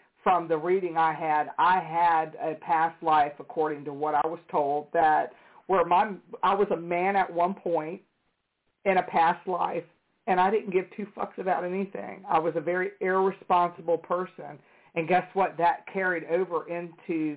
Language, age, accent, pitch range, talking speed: English, 50-69, American, 160-180 Hz, 175 wpm